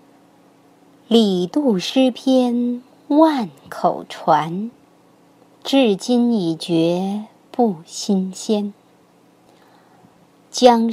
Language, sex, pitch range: Chinese, male, 185-255 Hz